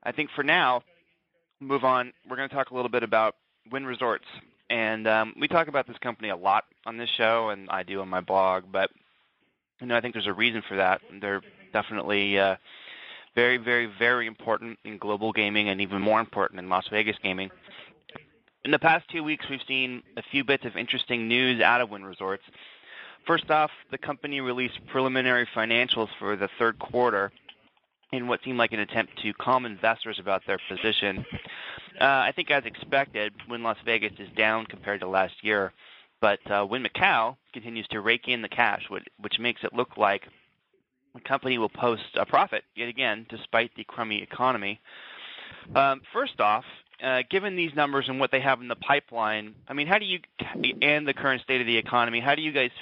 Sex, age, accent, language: male, 20-39, American, English